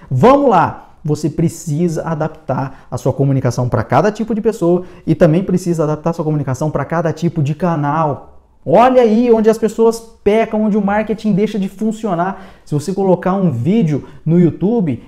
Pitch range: 135-185 Hz